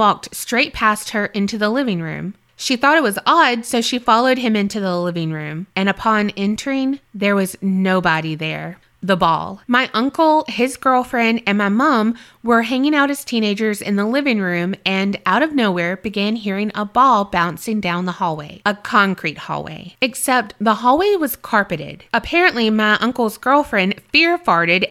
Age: 20-39